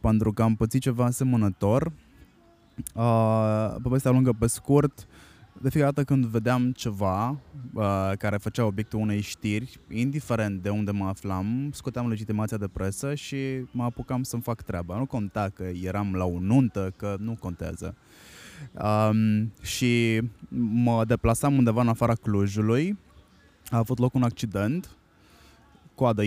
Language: Romanian